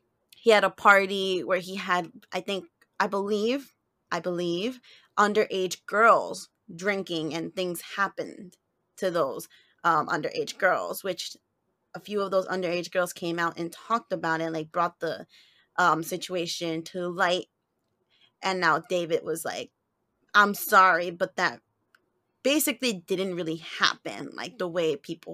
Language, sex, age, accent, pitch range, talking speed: English, female, 20-39, American, 180-225 Hz, 145 wpm